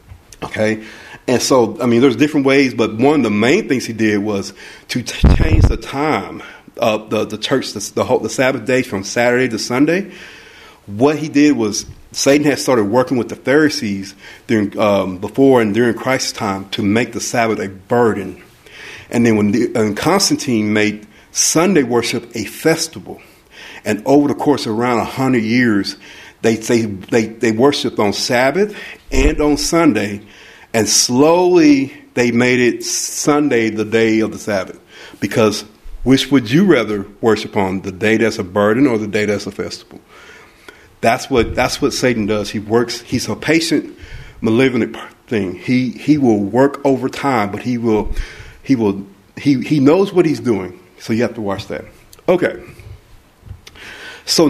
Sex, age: male, 50-69